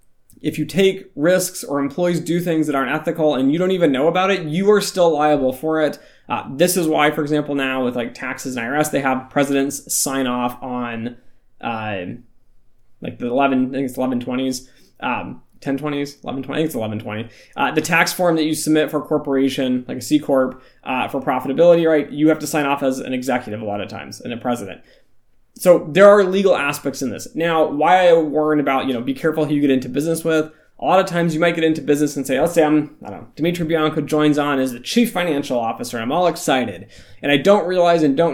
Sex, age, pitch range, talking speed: male, 20-39, 130-160 Hz, 230 wpm